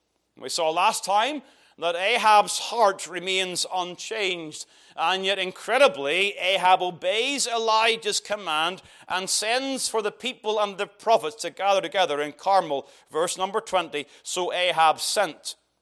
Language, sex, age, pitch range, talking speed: English, male, 40-59, 160-215 Hz, 135 wpm